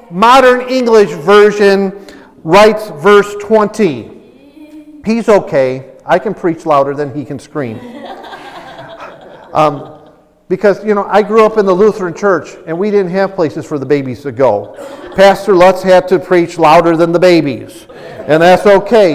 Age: 50-69